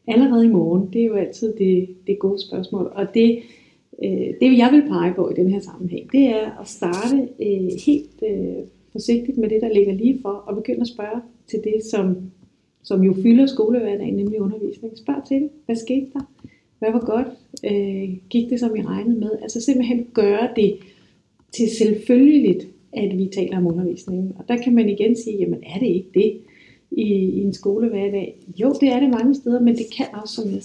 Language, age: Danish, 40-59